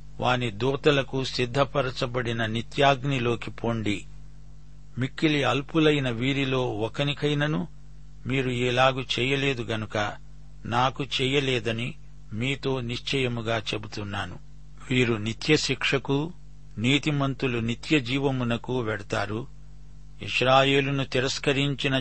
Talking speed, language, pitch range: 70 wpm, Telugu, 120-145 Hz